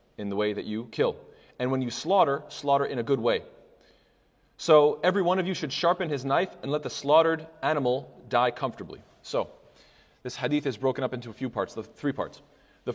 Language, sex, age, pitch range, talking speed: English, male, 30-49, 125-170 Hz, 210 wpm